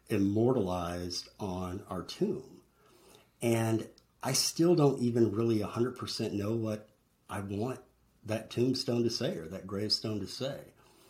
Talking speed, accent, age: 140 wpm, American, 50-69